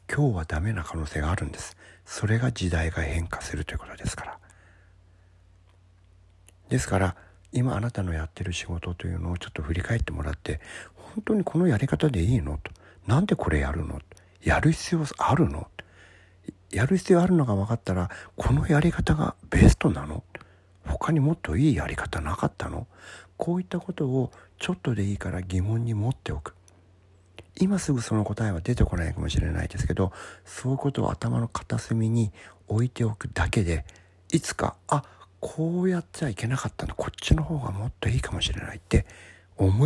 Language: Japanese